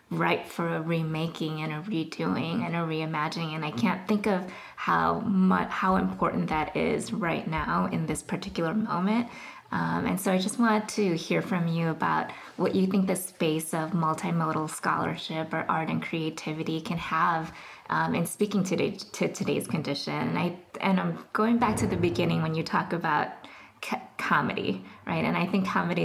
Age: 20-39